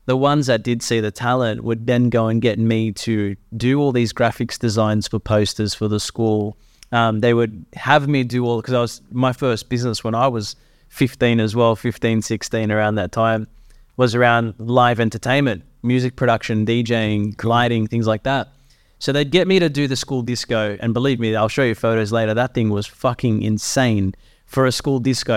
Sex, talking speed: male, 200 wpm